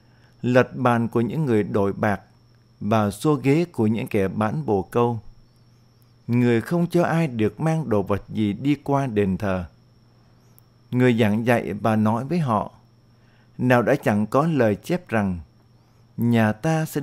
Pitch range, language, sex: 115-130 Hz, Vietnamese, male